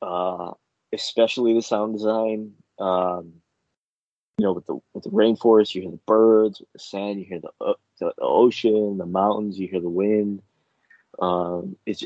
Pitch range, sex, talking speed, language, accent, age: 95-115 Hz, male, 170 wpm, English, American, 20-39